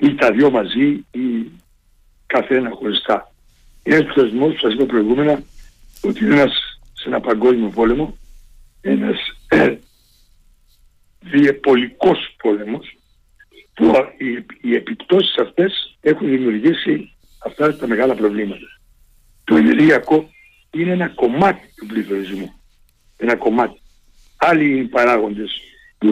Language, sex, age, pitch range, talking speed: Greek, male, 60-79, 115-185 Hz, 110 wpm